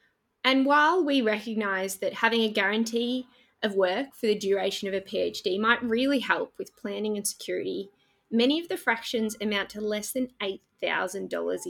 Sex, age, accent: female, 20-39, Australian